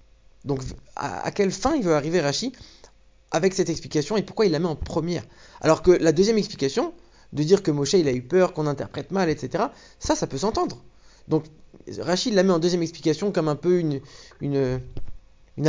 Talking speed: 205 wpm